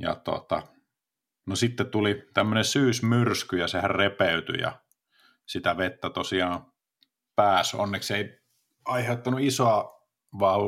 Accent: native